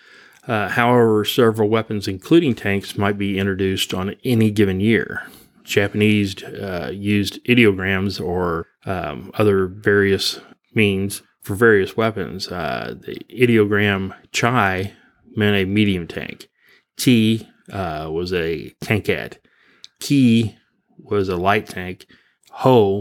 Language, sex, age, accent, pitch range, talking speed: English, male, 30-49, American, 95-110 Hz, 115 wpm